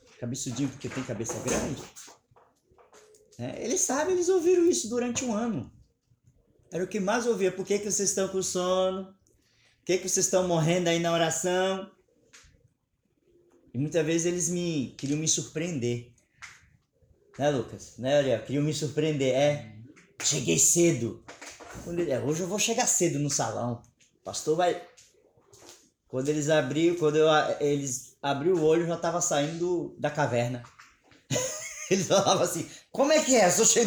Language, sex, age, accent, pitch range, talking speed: English, male, 20-39, Brazilian, 145-220 Hz, 150 wpm